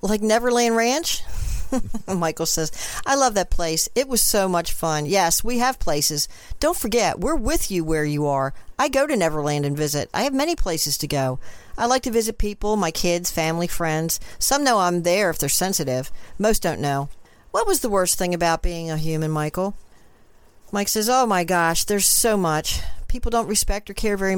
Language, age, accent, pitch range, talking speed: English, 50-69, American, 160-210 Hz, 200 wpm